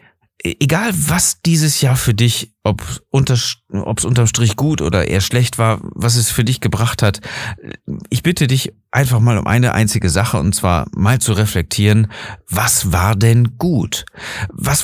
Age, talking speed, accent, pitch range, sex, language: 40-59, 160 wpm, German, 90-115 Hz, male, German